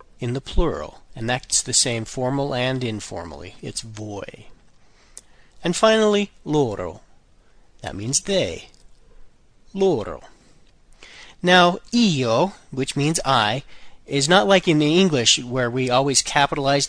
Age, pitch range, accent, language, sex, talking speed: 40-59, 120-155 Hz, American, English, male, 120 wpm